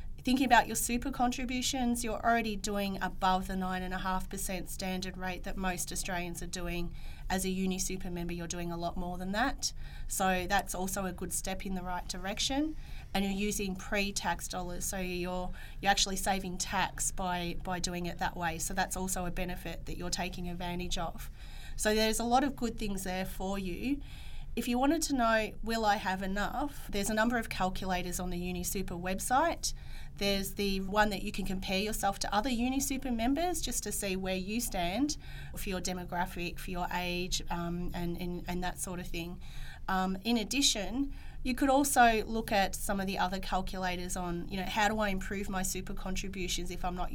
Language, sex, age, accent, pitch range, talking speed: English, female, 30-49, Australian, 180-210 Hz, 195 wpm